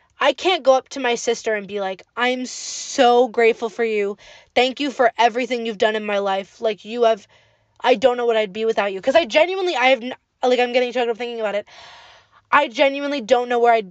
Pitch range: 215-265 Hz